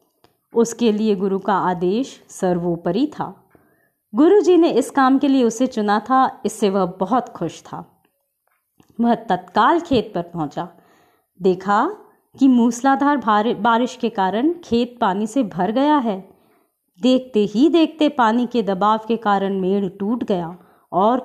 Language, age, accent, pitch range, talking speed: Hindi, 30-49, native, 195-275 Hz, 140 wpm